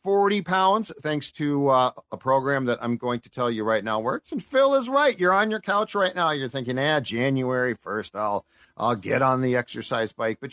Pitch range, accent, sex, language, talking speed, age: 140-200 Hz, American, male, English, 220 wpm, 40-59